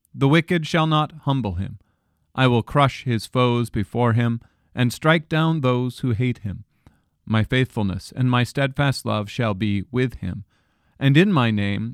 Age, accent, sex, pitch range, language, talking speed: 40-59, American, male, 105-135 Hz, English, 170 wpm